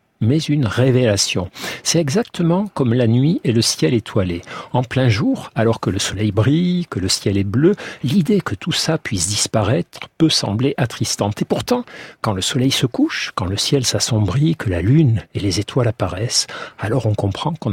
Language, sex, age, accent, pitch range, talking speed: French, male, 50-69, French, 105-150 Hz, 190 wpm